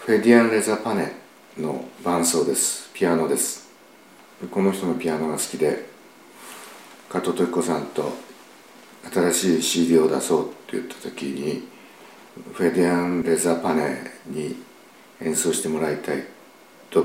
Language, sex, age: Japanese, male, 60-79